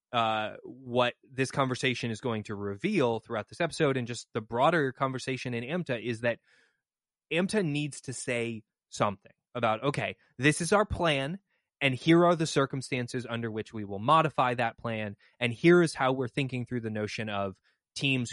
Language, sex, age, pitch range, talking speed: English, male, 20-39, 110-135 Hz, 175 wpm